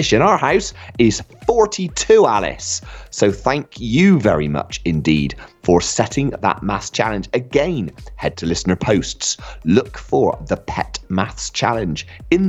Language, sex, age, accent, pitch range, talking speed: English, male, 30-49, British, 85-120 Hz, 140 wpm